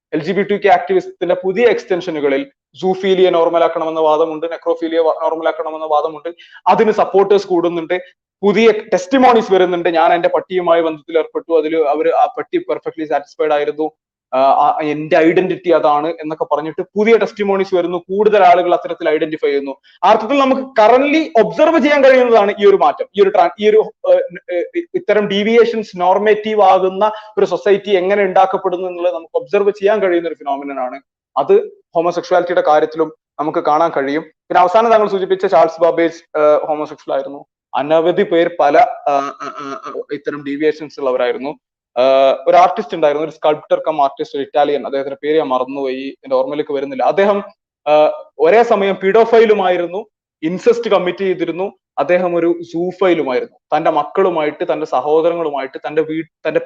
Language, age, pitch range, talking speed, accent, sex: Malayalam, 30-49, 160-210 Hz, 130 wpm, native, male